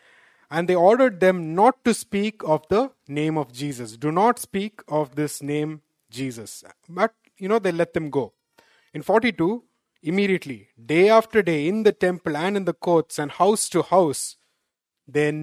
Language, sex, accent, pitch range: English, male, Indian, 145-180 Hz